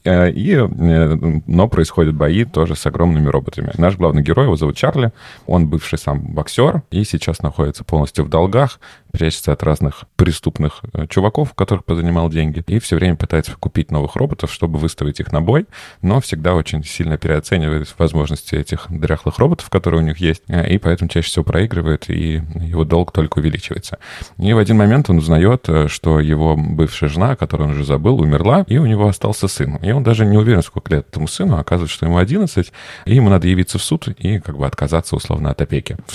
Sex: male